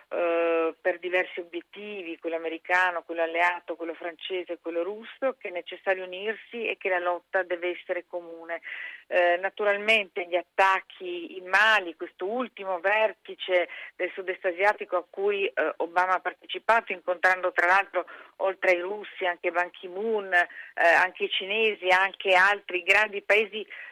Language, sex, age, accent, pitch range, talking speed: Italian, female, 40-59, native, 180-220 Hz, 135 wpm